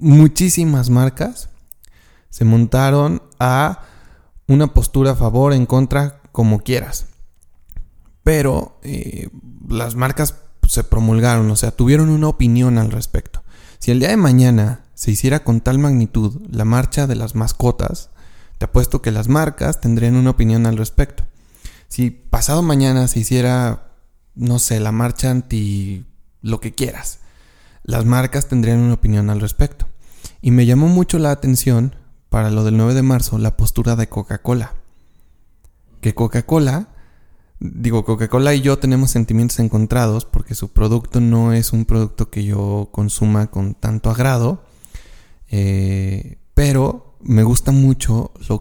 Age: 30-49